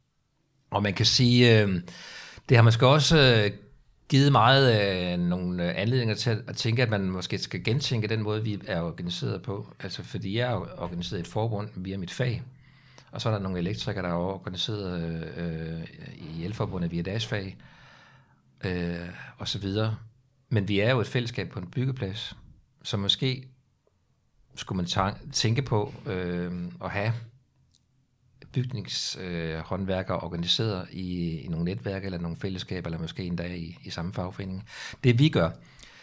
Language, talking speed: Danish, 160 wpm